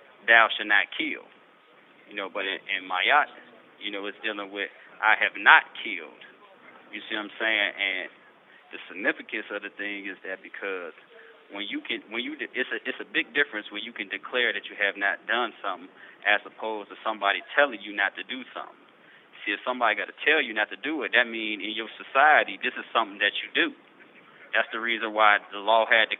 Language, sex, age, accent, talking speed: English, male, 30-49, American, 220 wpm